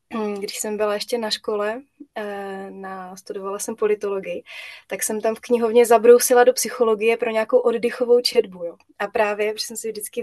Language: Czech